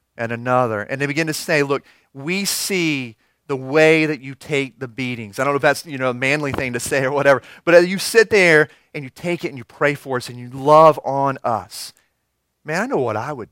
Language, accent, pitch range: English, American, 125-165 Hz